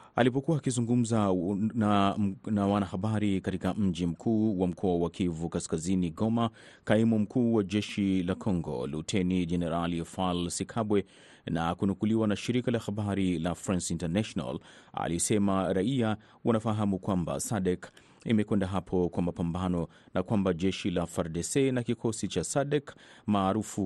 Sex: male